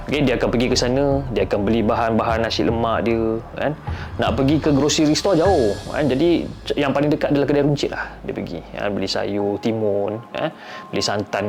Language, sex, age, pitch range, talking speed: Malay, male, 20-39, 120-170 Hz, 200 wpm